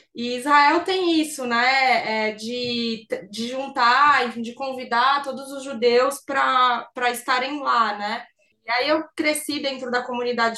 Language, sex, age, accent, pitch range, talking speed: Portuguese, female, 20-39, Brazilian, 235-285 Hz, 145 wpm